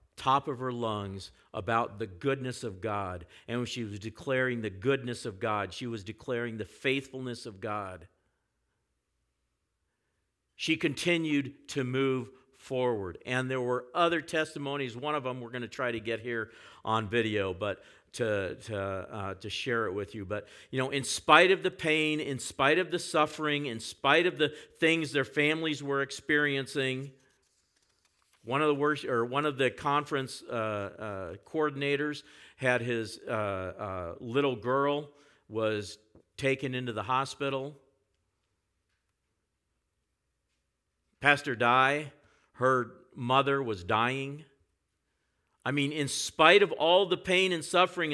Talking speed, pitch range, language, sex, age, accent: 145 wpm, 110-145 Hz, English, male, 50-69, American